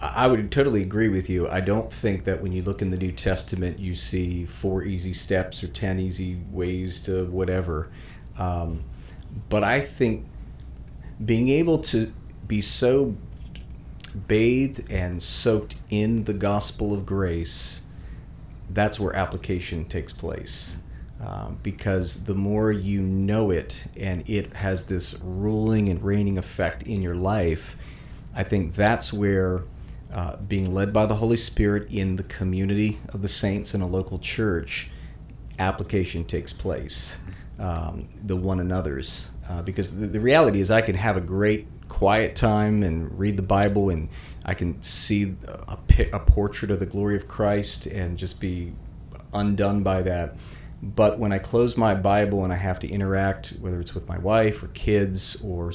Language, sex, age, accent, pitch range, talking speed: English, male, 40-59, American, 90-105 Hz, 165 wpm